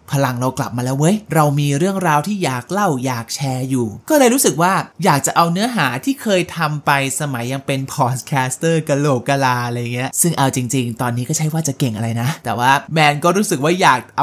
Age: 20-39